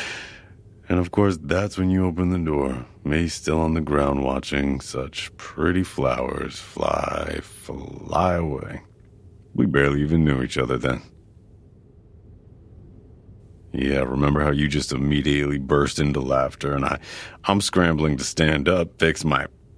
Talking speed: 140 wpm